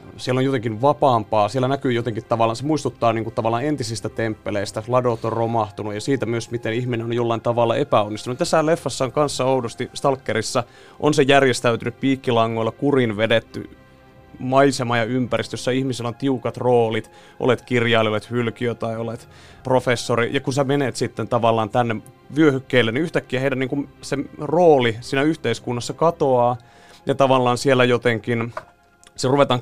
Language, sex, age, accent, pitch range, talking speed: Finnish, male, 30-49, native, 115-130 Hz, 155 wpm